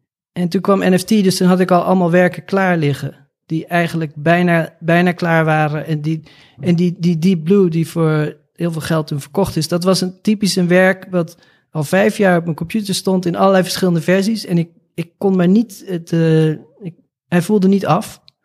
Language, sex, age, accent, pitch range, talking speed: Dutch, male, 40-59, Dutch, 155-190 Hz, 210 wpm